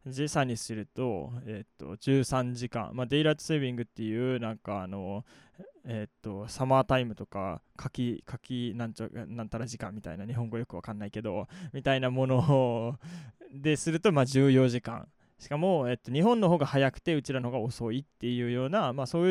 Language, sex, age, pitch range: Japanese, male, 20-39, 115-150 Hz